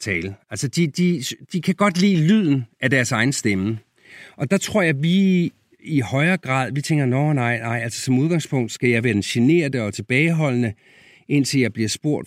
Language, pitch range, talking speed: Danish, 120-175 Hz, 195 wpm